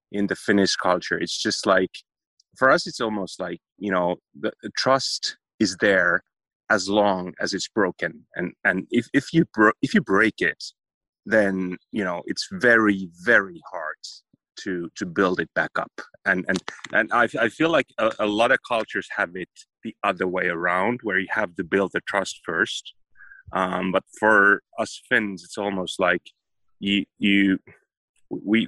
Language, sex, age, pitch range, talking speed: English, male, 30-49, 90-105 Hz, 175 wpm